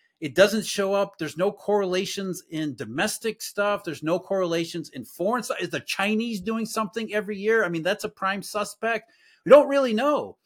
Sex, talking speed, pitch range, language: male, 190 wpm, 170-225 Hz, English